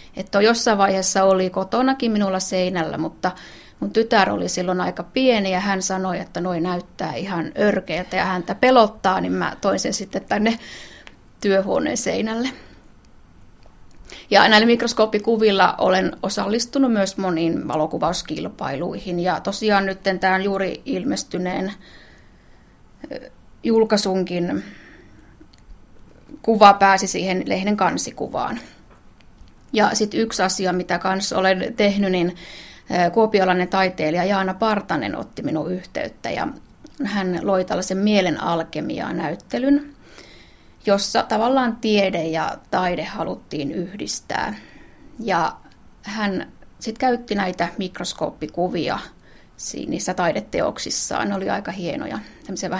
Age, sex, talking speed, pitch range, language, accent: 30-49, female, 110 wpm, 180-215 Hz, Finnish, native